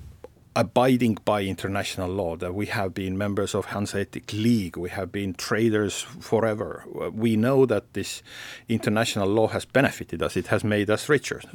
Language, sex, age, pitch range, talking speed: Danish, male, 50-69, 100-125 Hz, 165 wpm